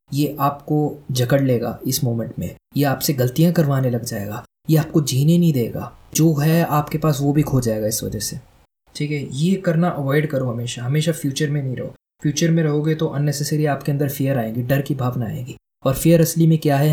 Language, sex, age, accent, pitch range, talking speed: Hindi, male, 20-39, native, 130-160 Hz, 215 wpm